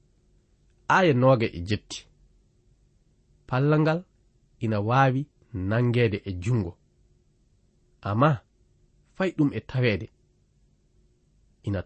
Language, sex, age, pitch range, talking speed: French, male, 30-49, 100-140 Hz, 70 wpm